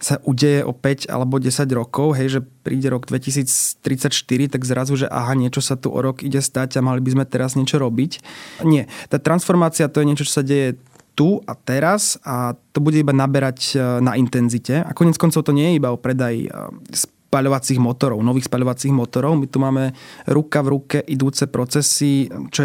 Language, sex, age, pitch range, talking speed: Slovak, male, 20-39, 130-150 Hz, 190 wpm